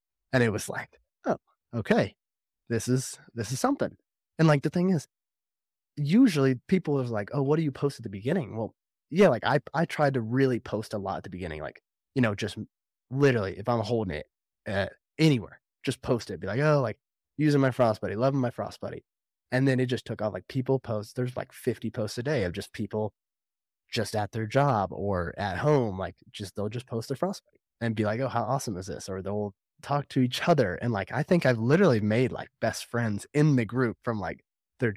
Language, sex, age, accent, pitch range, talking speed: English, male, 20-39, American, 105-135 Hz, 225 wpm